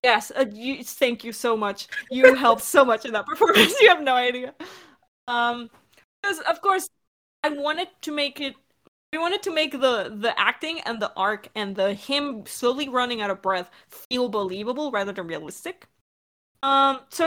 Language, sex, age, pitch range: English, female, 20-39, 200-270 Hz